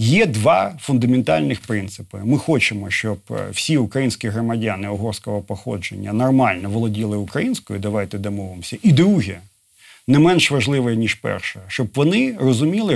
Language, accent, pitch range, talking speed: Ukrainian, native, 105-155 Hz, 125 wpm